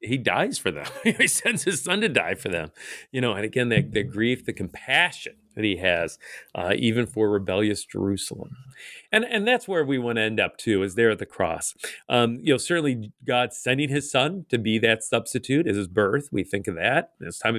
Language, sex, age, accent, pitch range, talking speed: English, male, 40-59, American, 110-160 Hz, 220 wpm